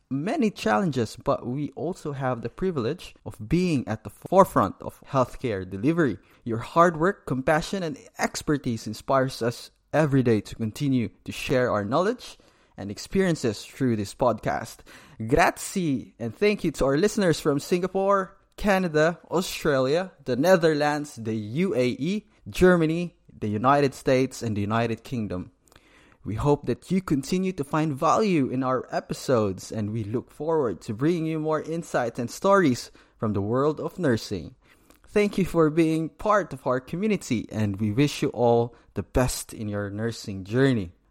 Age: 20-39